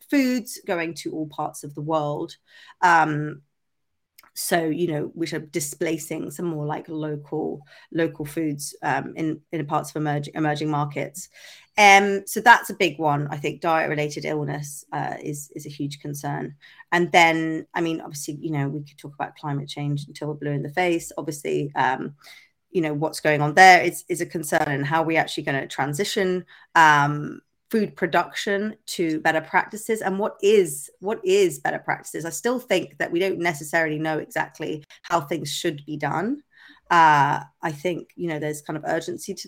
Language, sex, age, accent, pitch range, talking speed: English, female, 30-49, British, 150-185 Hz, 185 wpm